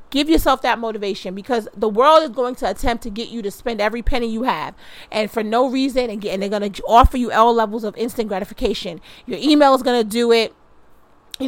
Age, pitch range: 40-59, 205-245 Hz